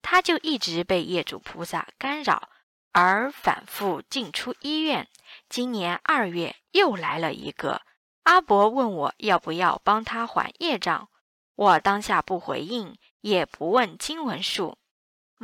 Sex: female